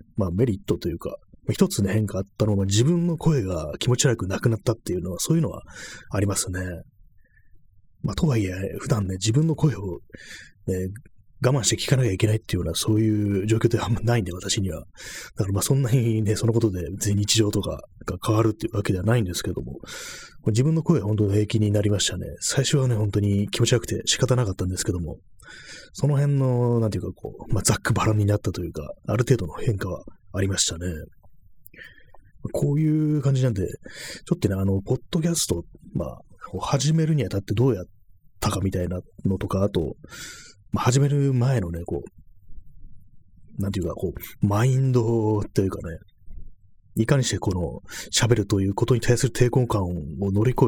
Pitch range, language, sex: 95-125 Hz, Japanese, male